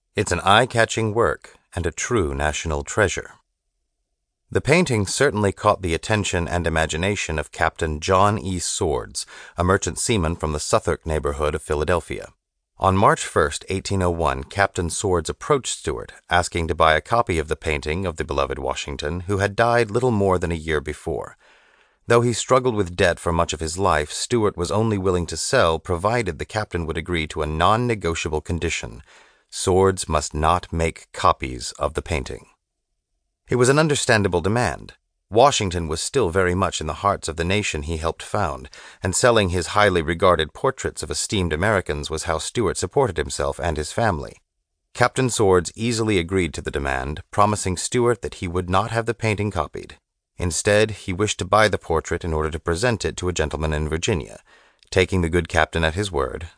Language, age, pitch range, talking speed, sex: English, 30-49, 80-105 Hz, 180 wpm, male